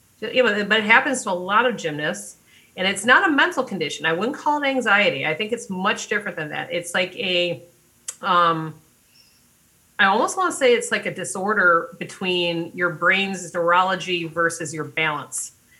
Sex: female